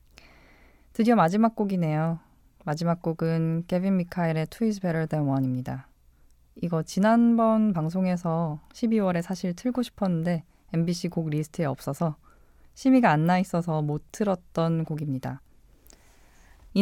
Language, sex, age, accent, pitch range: Korean, female, 20-39, native, 155-205 Hz